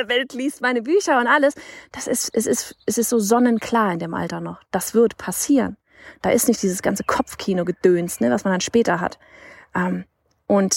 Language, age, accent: German, 30-49, German